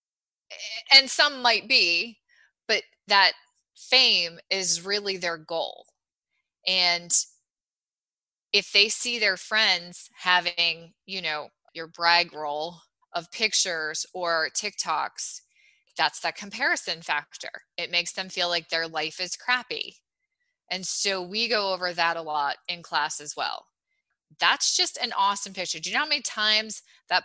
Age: 20-39